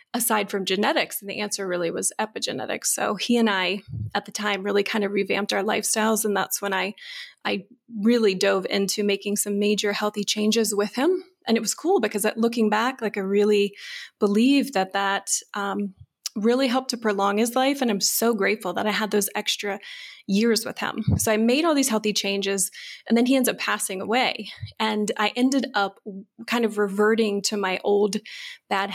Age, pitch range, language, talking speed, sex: 20-39, 205-235 Hz, English, 195 wpm, female